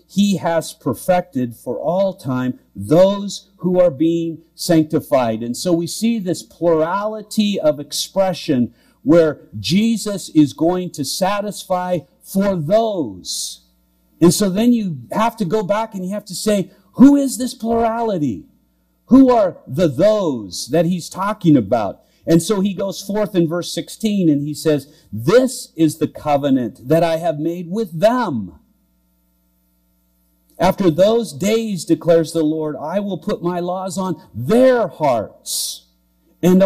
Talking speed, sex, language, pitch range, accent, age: 145 wpm, male, English, 125-200 Hz, American, 50-69